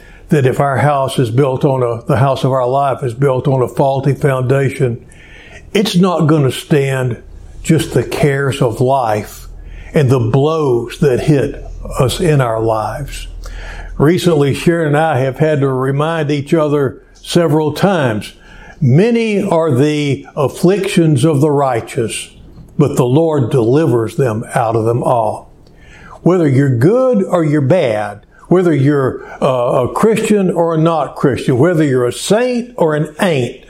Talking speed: 155 wpm